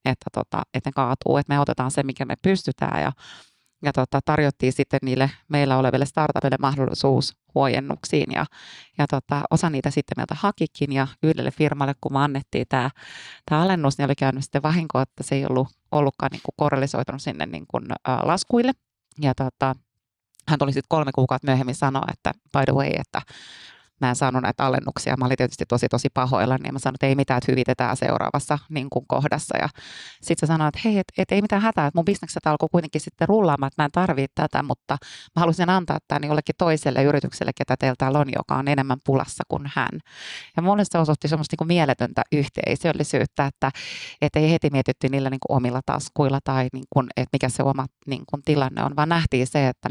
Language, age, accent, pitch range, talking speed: Finnish, 30-49, native, 130-155 Hz, 195 wpm